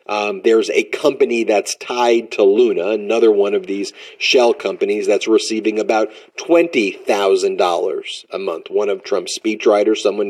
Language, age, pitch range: English, 30-49, 345-425 Hz